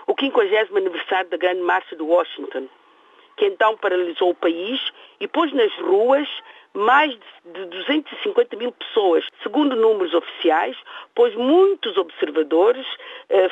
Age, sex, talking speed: 50-69, female, 130 wpm